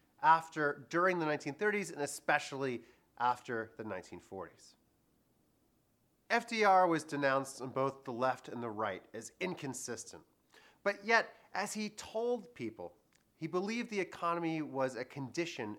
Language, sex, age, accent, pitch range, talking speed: English, male, 30-49, American, 130-175 Hz, 130 wpm